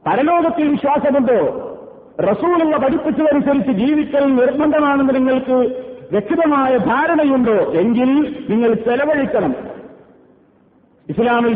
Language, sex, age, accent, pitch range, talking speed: Malayalam, male, 50-69, native, 235-275 Hz, 65 wpm